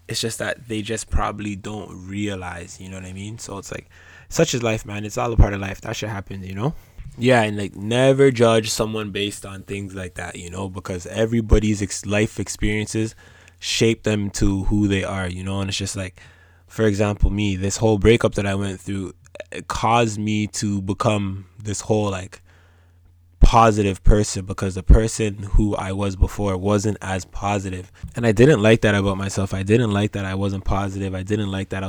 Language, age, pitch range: English, 20-39, 95-110 Hz